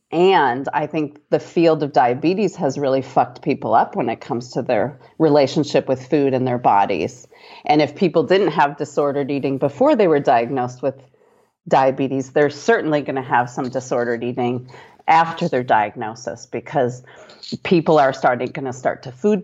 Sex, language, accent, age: female, English, American, 40-59